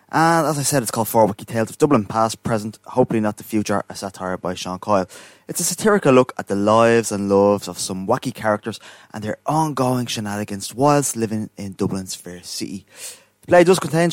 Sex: male